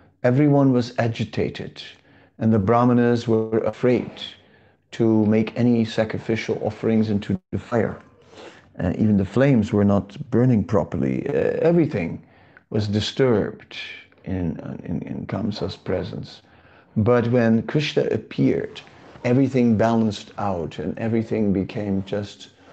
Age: 50-69